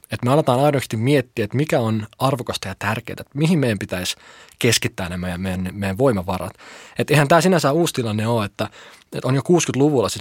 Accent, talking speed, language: native, 200 wpm, Finnish